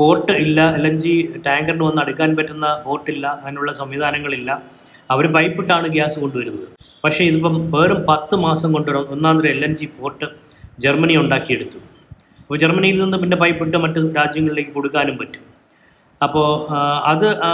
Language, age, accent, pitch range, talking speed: Malayalam, 20-39, native, 140-165 Hz, 135 wpm